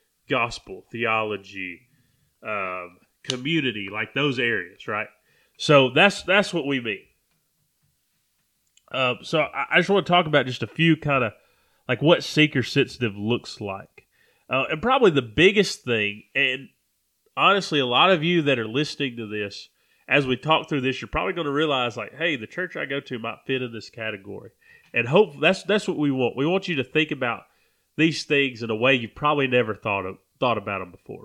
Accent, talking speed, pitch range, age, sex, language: American, 190 wpm, 115-150 Hz, 30-49, male, English